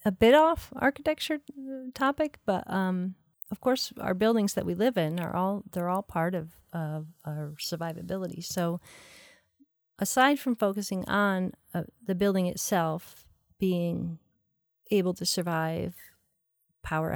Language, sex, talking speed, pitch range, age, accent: English, female, 135 wpm, 165-210 Hz, 40-59, American